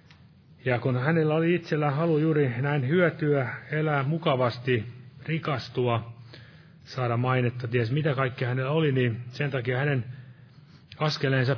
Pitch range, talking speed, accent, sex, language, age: 125-150 Hz, 125 wpm, native, male, Finnish, 30-49